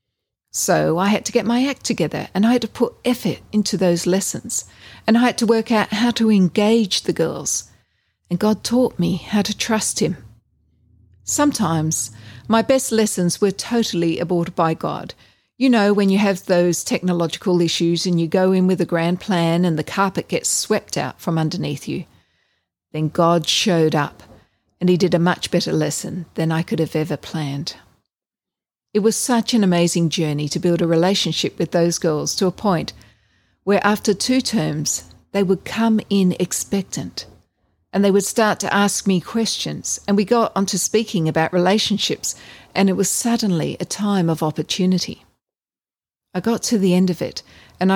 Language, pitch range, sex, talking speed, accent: English, 165-215 Hz, female, 180 wpm, Australian